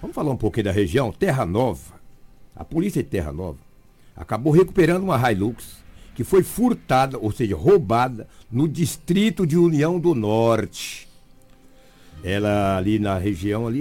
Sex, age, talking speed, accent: male, 60-79, 150 wpm, Brazilian